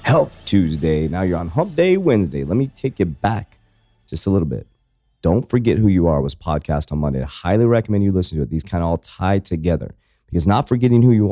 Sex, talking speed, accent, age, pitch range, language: male, 235 wpm, American, 30-49, 85-115 Hz, English